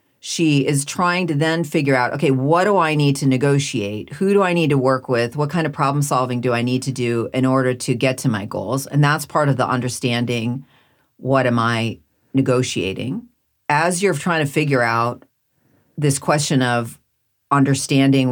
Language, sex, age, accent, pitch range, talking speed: English, female, 40-59, American, 125-150 Hz, 190 wpm